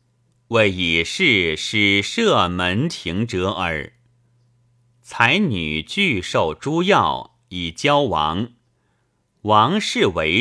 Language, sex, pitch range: Chinese, male, 90-125 Hz